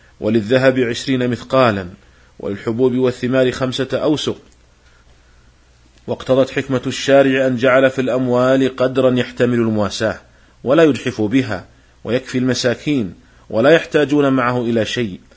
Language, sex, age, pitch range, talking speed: Arabic, male, 40-59, 110-130 Hz, 105 wpm